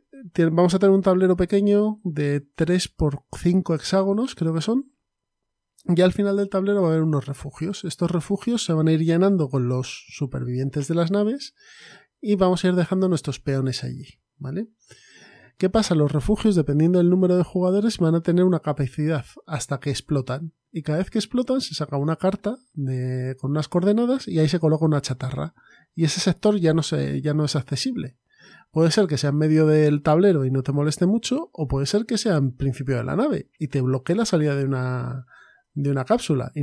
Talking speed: 205 wpm